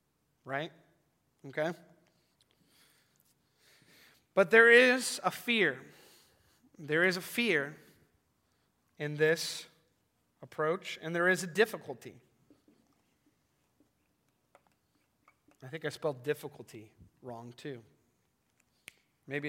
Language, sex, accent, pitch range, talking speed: English, male, American, 140-170 Hz, 85 wpm